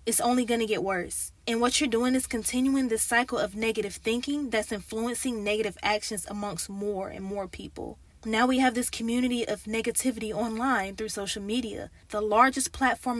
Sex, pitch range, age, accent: female, 205-245 Hz, 20-39, American